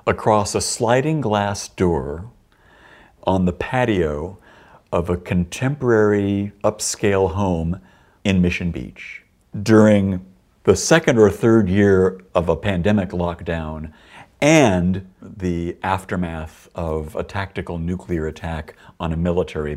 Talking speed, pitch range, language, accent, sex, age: 110 wpm, 80-100 Hz, English, American, male, 60-79